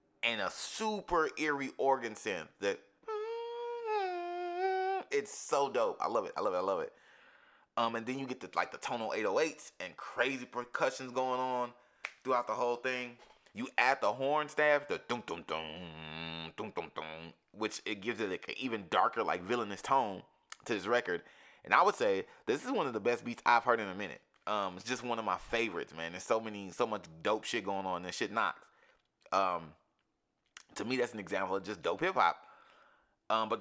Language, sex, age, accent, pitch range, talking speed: English, male, 20-39, American, 100-140 Hz, 205 wpm